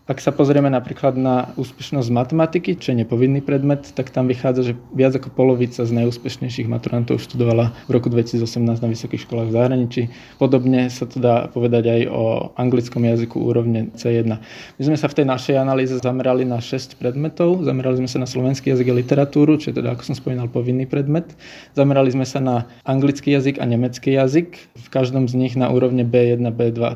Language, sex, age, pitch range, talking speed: Slovak, male, 20-39, 125-140 Hz, 190 wpm